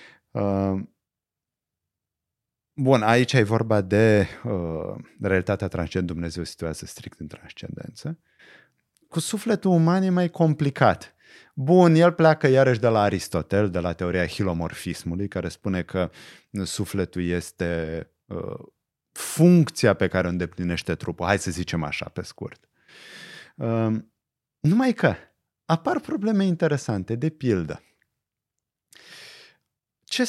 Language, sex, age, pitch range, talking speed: Romanian, male, 30-49, 100-165 Hz, 110 wpm